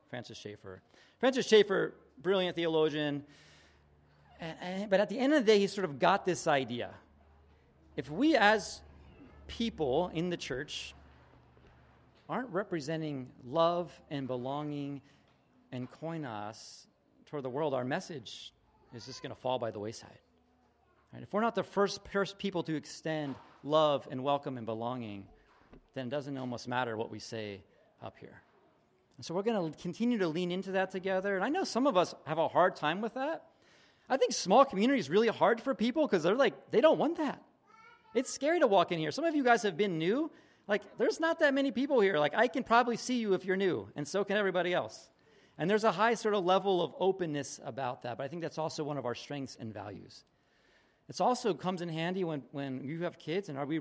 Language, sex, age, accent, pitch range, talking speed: English, male, 40-59, American, 130-205 Hz, 195 wpm